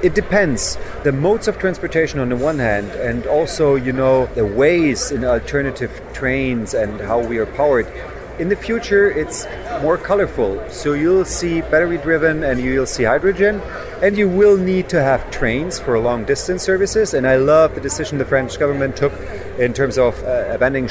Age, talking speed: 40-59, 180 wpm